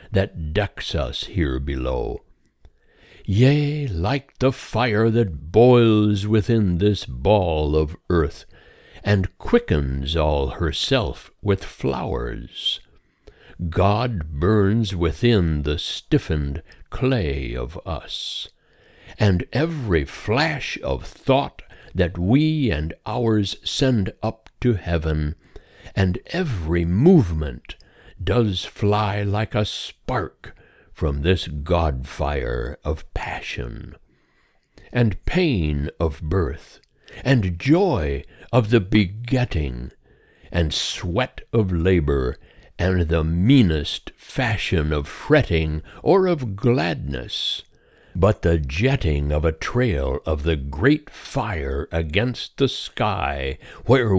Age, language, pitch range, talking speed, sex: 60-79, English, 80-115 Hz, 100 wpm, male